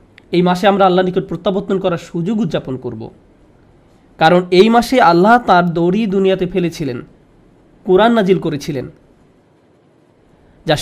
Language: Bengali